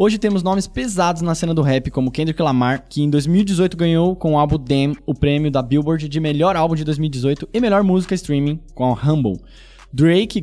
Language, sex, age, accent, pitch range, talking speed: Portuguese, male, 10-29, Brazilian, 145-185 Hz, 205 wpm